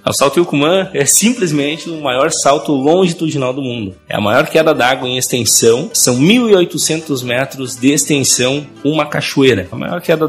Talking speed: 165 wpm